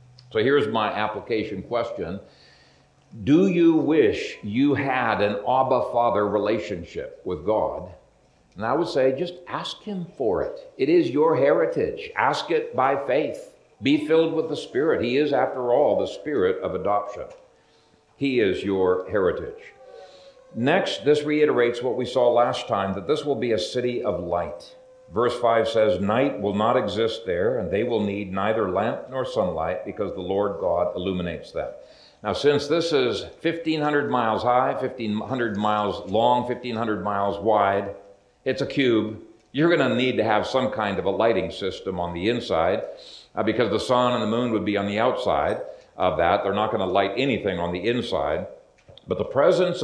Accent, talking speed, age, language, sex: American, 175 wpm, 60-79, English, male